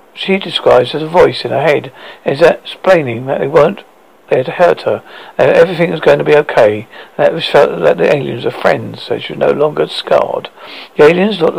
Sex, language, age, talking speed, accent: male, English, 50-69, 210 wpm, British